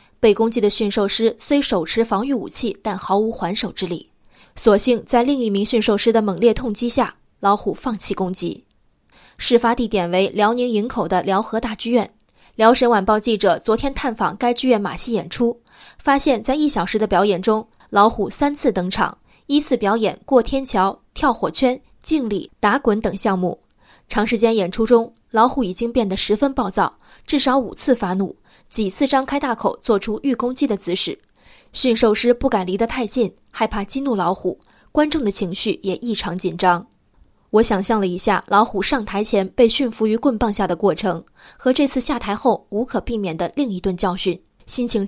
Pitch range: 200-250 Hz